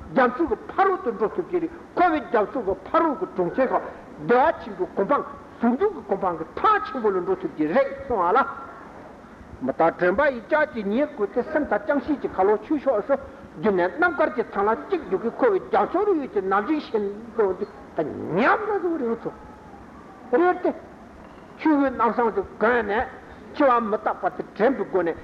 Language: Italian